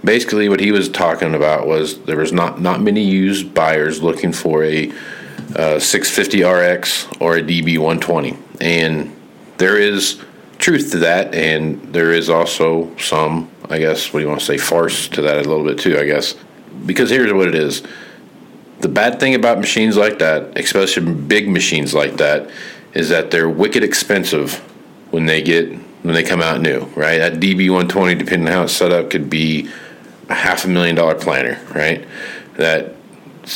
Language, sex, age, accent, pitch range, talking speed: English, male, 40-59, American, 80-95 Hz, 175 wpm